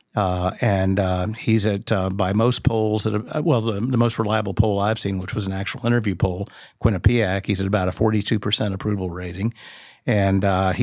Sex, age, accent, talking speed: male, 50-69, American, 200 wpm